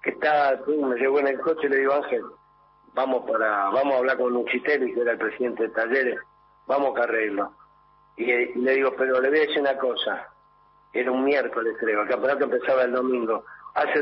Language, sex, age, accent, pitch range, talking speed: Spanish, male, 50-69, Argentinian, 125-155 Hz, 215 wpm